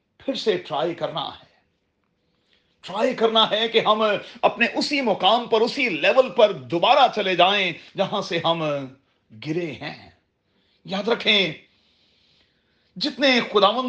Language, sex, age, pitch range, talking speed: Urdu, male, 40-59, 185-250 Hz, 125 wpm